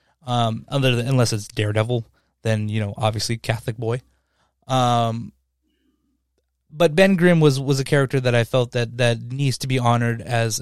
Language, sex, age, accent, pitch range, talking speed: English, male, 20-39, American, 120-150 Hz, 170 wpm